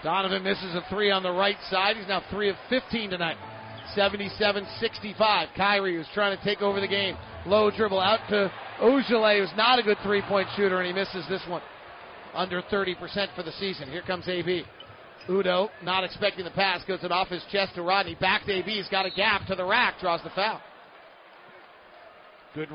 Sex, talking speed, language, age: male, 195 wpm, English, 40-59